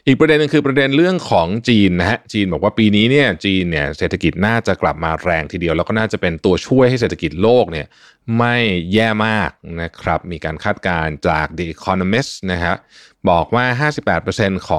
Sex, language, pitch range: male, Thai, 85-120 Hz